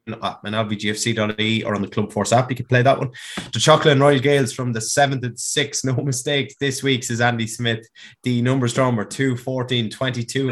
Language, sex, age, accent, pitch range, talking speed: English, male, 20-39, Irish, 110-130 Hz, 210 wpm